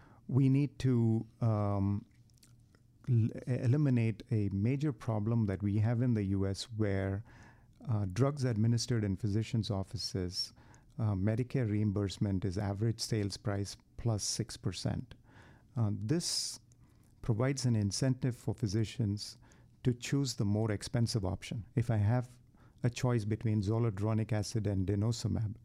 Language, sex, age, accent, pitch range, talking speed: English, male, 50-69, Indian, 105-120 Hz, 125 wpm